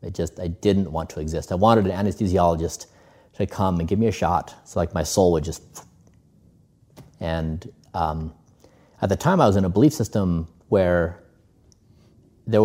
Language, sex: English, male